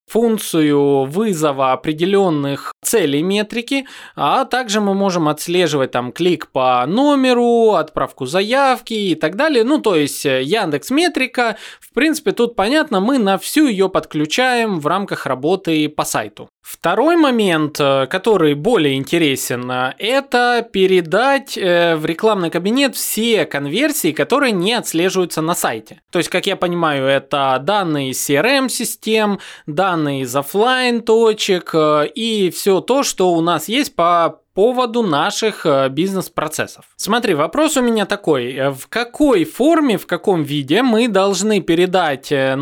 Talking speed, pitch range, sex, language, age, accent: 130 wpm, 150-230 Hz, male, Russian, 20-39, native